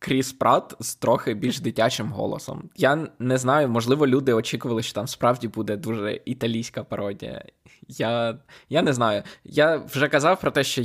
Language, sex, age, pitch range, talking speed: Ukrainian, male, 20-39, 110-130 Hz, 165 wpm